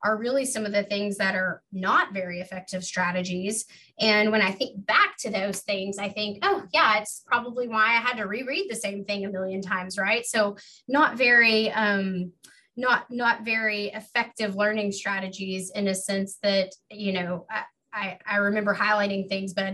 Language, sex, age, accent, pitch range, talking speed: English, female, 20-39, American, 190-215 Hz, 180 wpm